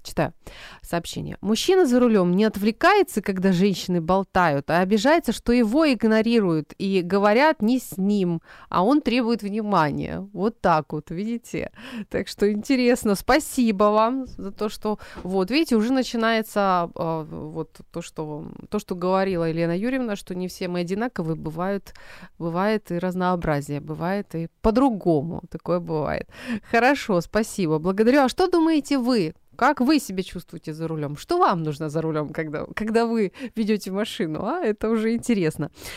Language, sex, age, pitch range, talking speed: Ukrainian, female, 20-39, 165-225 Hz, 150 wpm